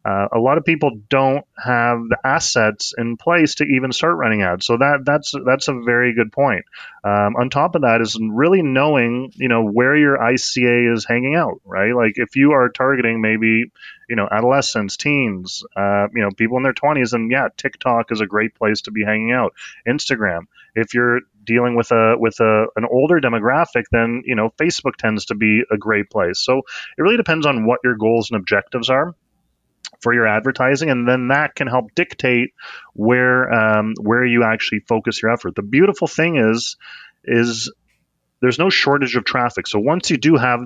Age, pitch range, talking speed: 20-39, 110-130 Hz, 195 wpm